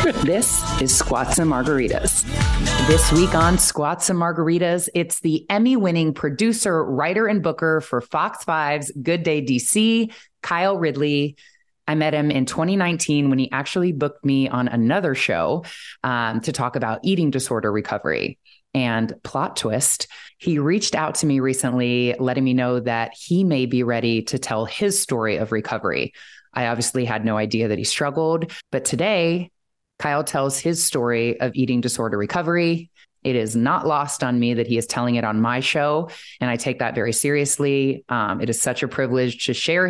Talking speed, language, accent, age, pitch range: 175 wpm, English, American, 20-39, 125-170 Hz